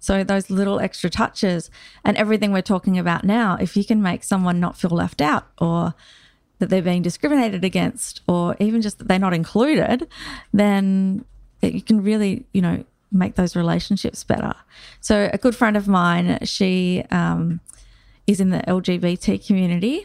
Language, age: English, 30-49